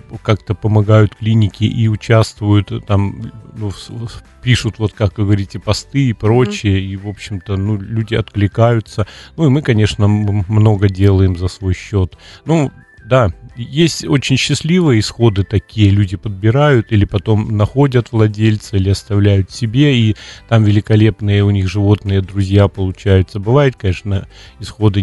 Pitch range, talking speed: 100-115 Hz, 135 wpm